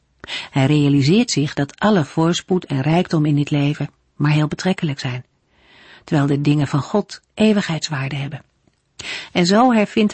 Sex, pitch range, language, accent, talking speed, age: female, 145-190 Hz, Dutch, Dutch, 150 wpm, 50-69